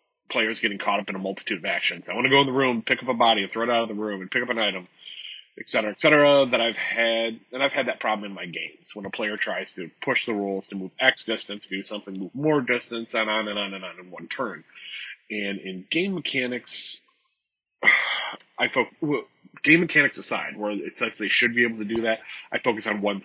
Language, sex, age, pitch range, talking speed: English, male, 30-49, 100-125 Hz, 250 wpm